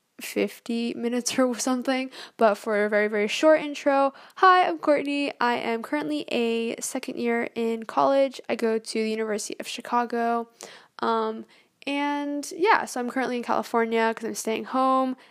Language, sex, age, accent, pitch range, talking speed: English, female, 10-29, American, 230-290 Hz, 160 wpm